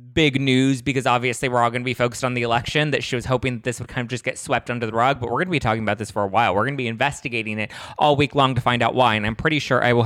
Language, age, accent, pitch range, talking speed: English, 20-39, American, 110-130 Hz, 340 wpm